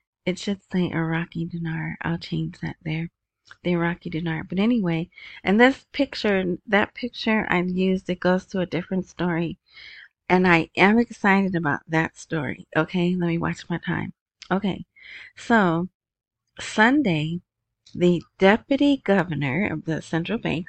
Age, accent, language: 30-49, American, English